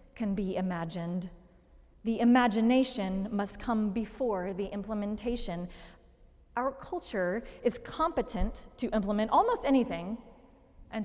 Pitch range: 205-255 Hz